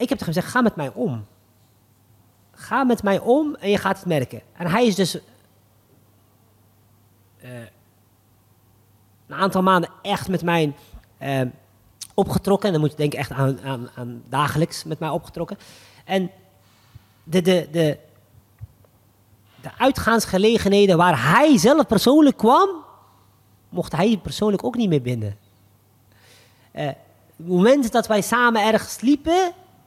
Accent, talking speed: Dutch, 140 wpm